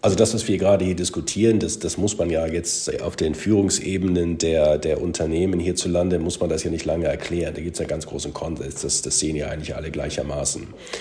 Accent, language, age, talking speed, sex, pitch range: German, German, 50-69, 225 wpm, male, 90-120 Hz